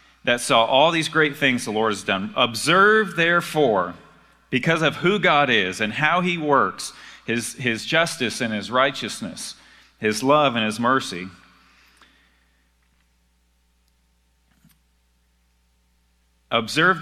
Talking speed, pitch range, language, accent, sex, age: 115 wpm, 110-150 Hz, English, American, male, 40-59